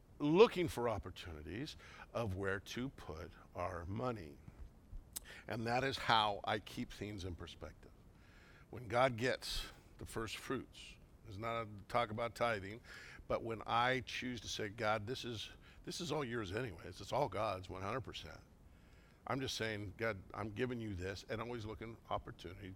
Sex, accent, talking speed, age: male, American, 165 wpm, 60-79